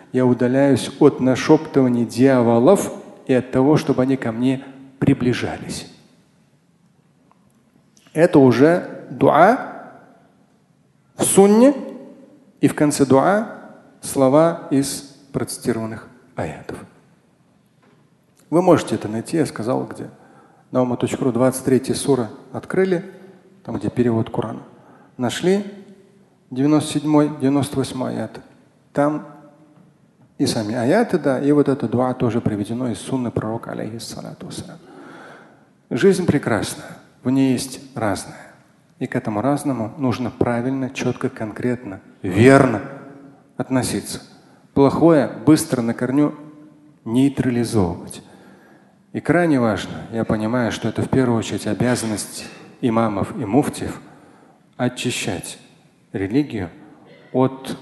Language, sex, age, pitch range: Russian, male, 40-59, 120-150 Hz